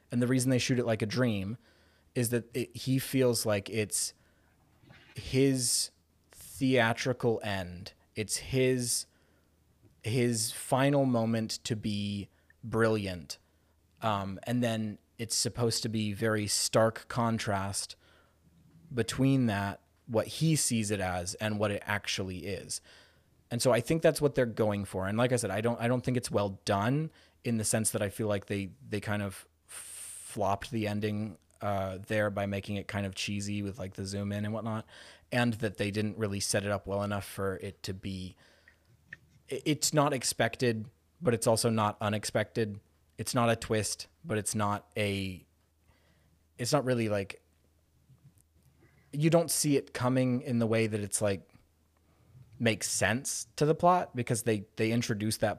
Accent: American